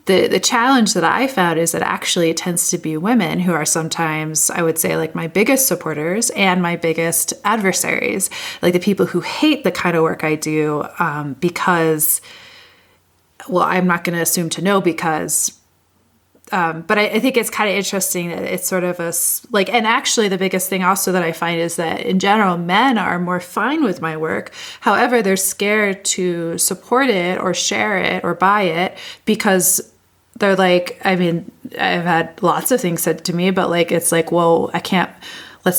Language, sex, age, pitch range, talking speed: English, female, 30-49, 165-195 Hz, 200 wpm